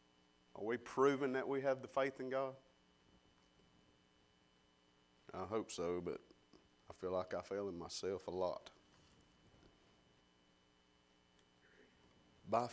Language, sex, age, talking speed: English, male, 40-59, 115 wpm